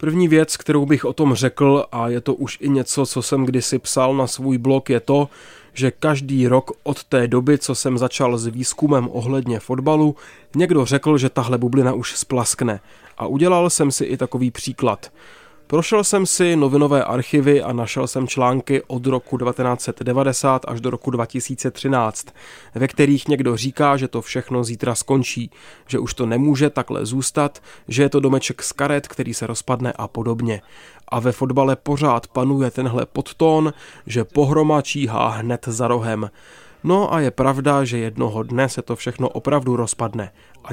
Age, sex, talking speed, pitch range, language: 20-39, male, 170 wpm, 120-140 Hz, Czech